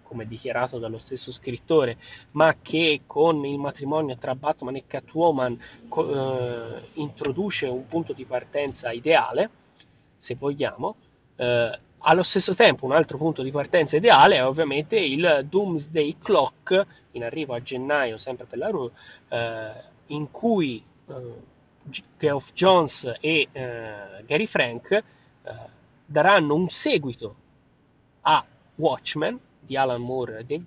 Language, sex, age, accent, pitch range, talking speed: Italian, male, 30-49, native, 125-160 Hz, 135 wpm